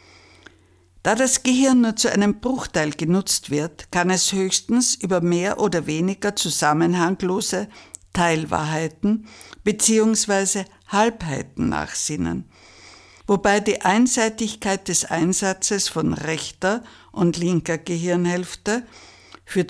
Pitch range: 155-220 Hz